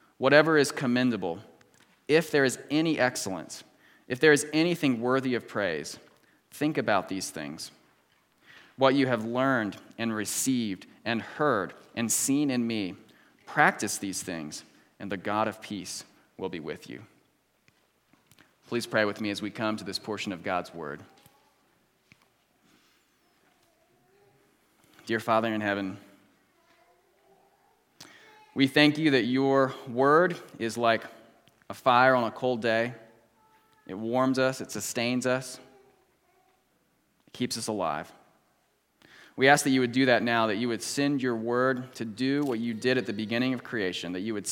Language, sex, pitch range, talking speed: English, male, 110-135 Hz, 150 wpm